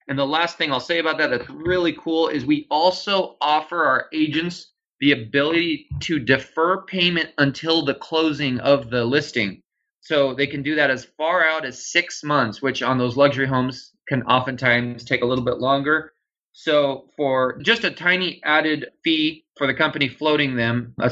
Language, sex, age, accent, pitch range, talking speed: English, male, 20-39, American, 130-160 Hz, 180 wpm